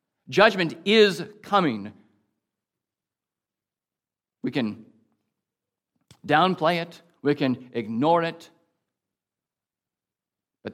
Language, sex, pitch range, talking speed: English, male, 130-215 Hz, 65 wpm